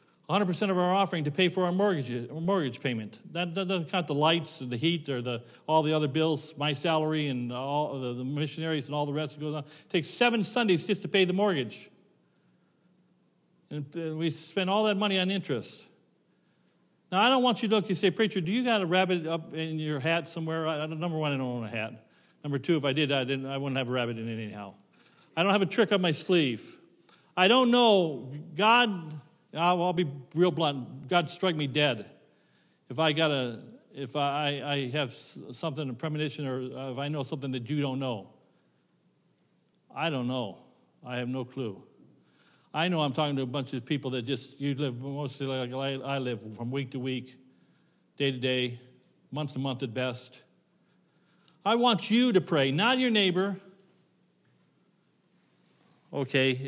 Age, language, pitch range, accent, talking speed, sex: 50-69, English, 135-180 Hz, American, 190 wpm, male